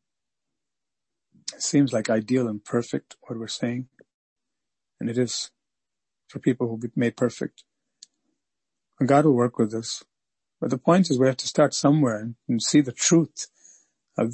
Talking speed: 160 wpm